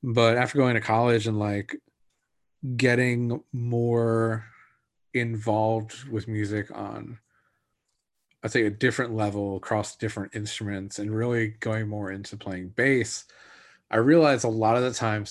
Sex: male